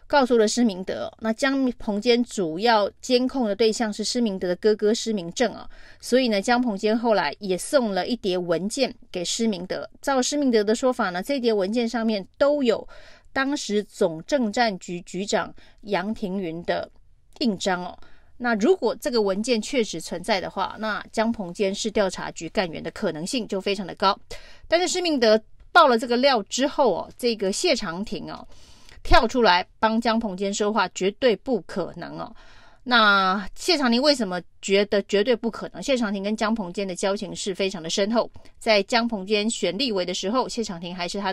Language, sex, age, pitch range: Chinese, female, 30-49, 195-240 Hz